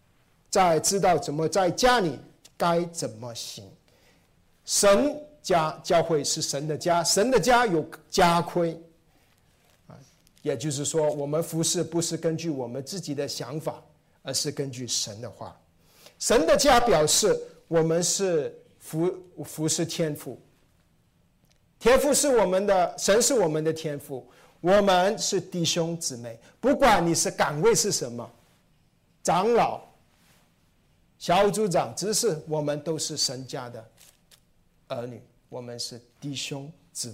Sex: male